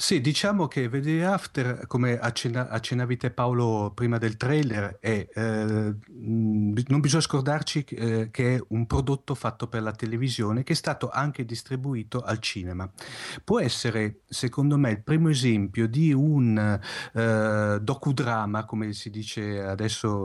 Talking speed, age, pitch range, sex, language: 140 wpm, 40-59, 110-130 Hz, male, Italian